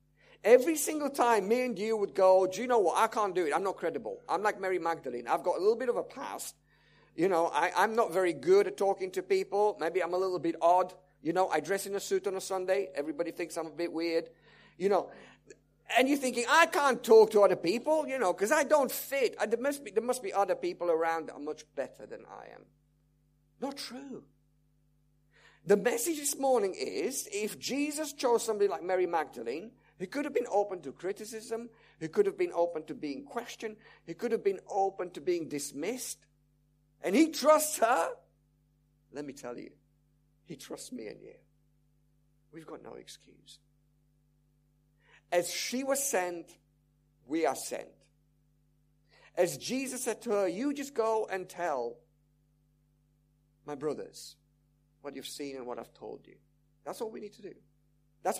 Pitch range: 145-230 Hz